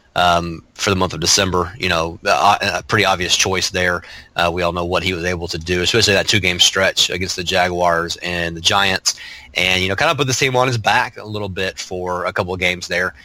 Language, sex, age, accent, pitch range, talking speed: English, male, 30-49, American, 90-110 Hz, 245 wpm